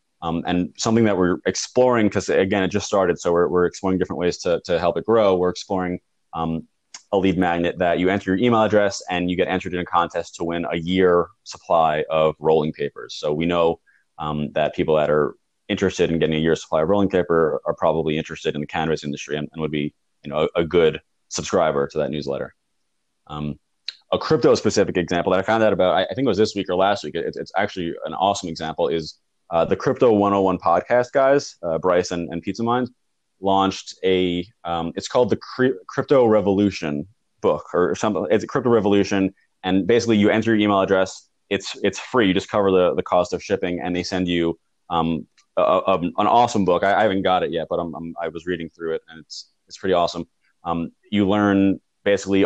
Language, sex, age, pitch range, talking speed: English, male, 20-39, 85-100 Hz, 220 wpm